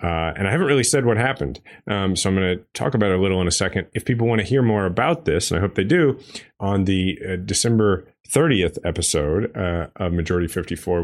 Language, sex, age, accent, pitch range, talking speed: English, male, 30-49, American, 85-105 Hz, 240 wpm